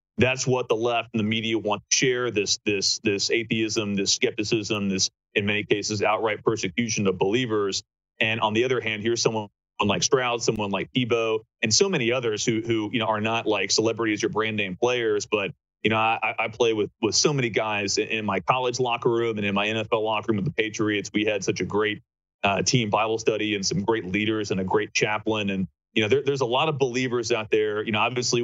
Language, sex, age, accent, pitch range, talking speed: English, male, 30-49, American, 105-120 Hz, 230 wpm